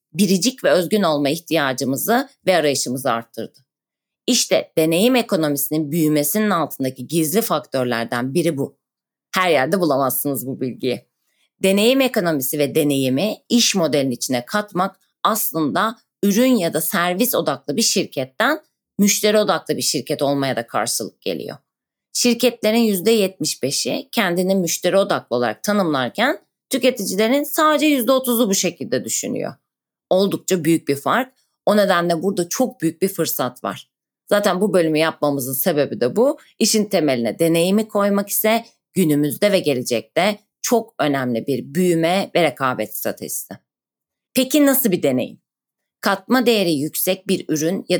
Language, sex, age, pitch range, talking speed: Turkish, female, 30-49, 150-225 Hz, 130 wpm